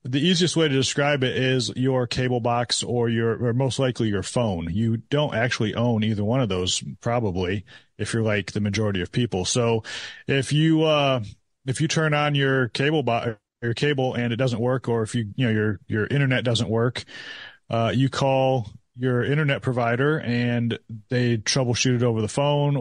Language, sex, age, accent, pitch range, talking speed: English, male, 30-49, American, 110-135 Hz, 190 wpm